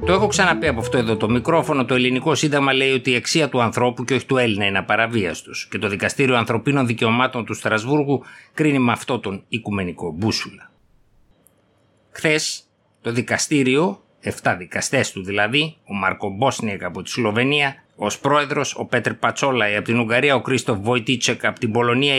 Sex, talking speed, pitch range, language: male, 175 wpm, 110-135 Hz, Greek